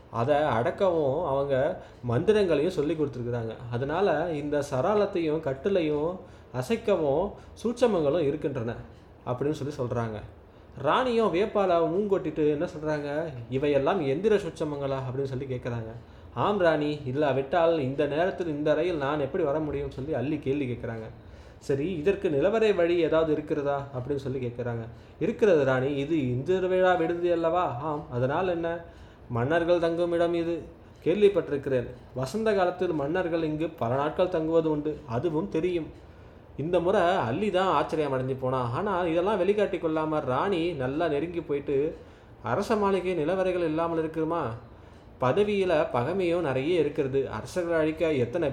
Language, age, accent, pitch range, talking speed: Tamil, 20-39, native, 125-170 Hz, 130 wpm